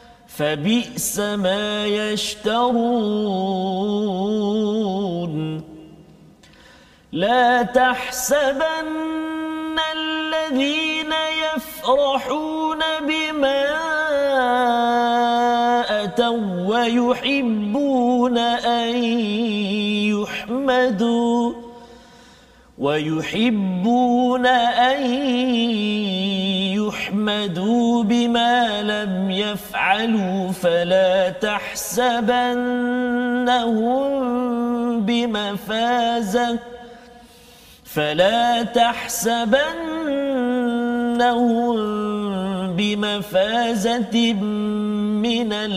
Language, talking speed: Malayalam, 30 wpm